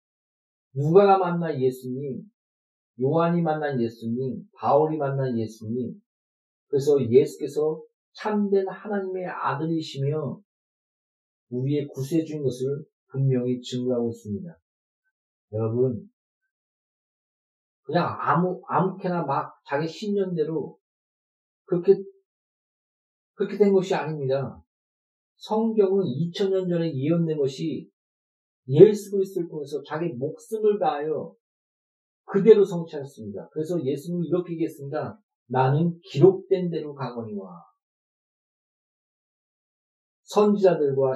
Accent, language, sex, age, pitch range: native, Korean, male, 40-59, 135-195 Hz